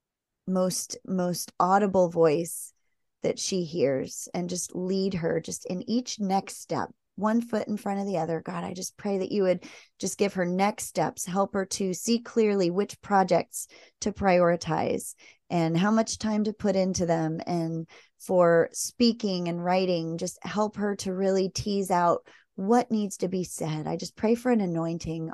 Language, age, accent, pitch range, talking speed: English, 30-49, American, 175-205 Hz, 180 wpm